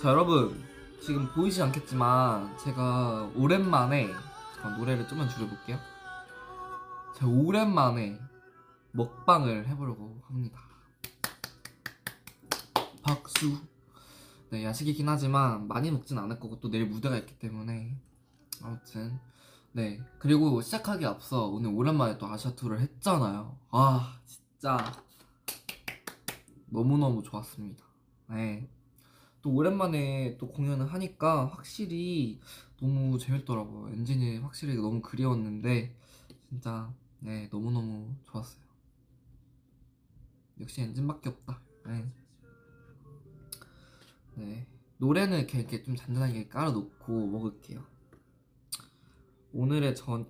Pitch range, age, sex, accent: 115-140 Hz, 20-39, male, native